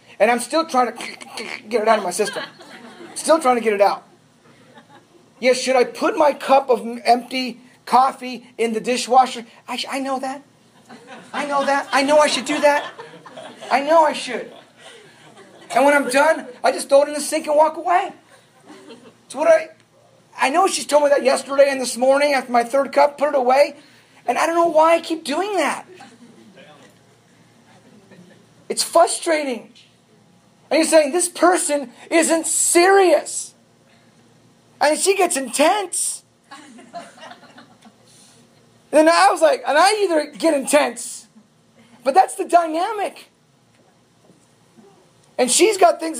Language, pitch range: English, 255-320 Hz